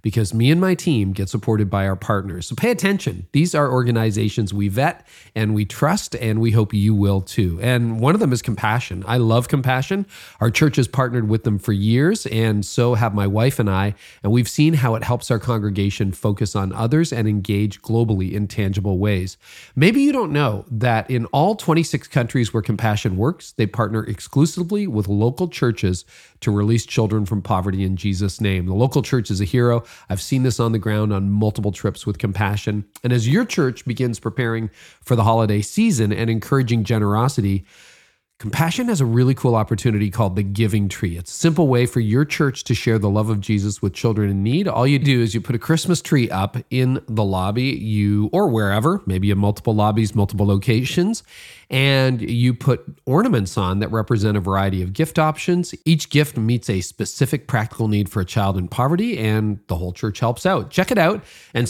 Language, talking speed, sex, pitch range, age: English, 200 wpm, male, 105-130 Hz, 40-59